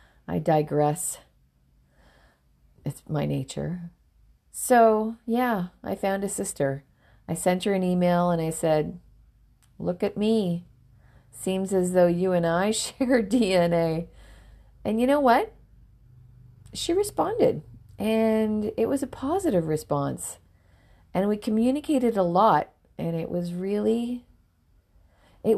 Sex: female